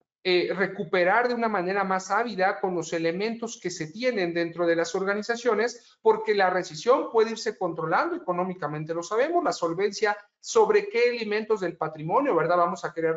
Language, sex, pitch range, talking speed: Spanish, male, 170-235 Hz, 170 wpm